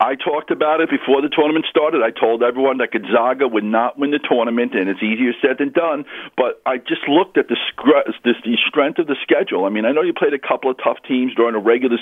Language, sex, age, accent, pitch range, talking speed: English, male, 50-69, American, 125-190 Hz, 240 wpm